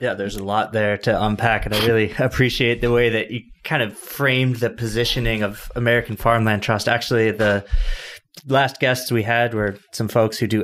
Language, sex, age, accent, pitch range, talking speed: English, male, 20-39, American, 110-140 Hz, 195 wpm